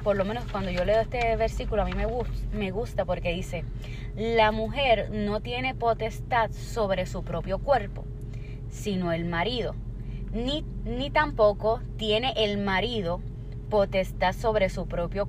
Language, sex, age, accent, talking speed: Spanish, female, 20-39, American, 145 wpm